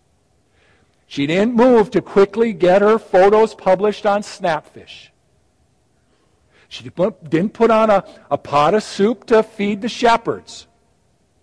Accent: American